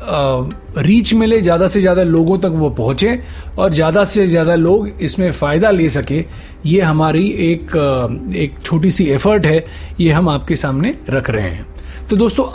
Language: Hindi